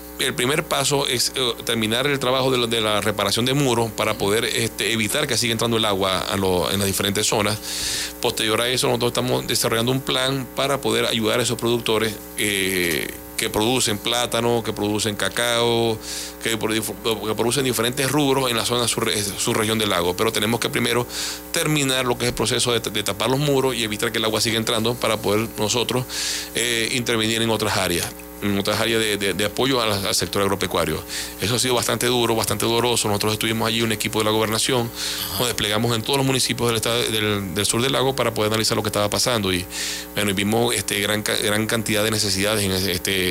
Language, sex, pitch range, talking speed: Spanish, male, 100-120 Hz, 205 wpm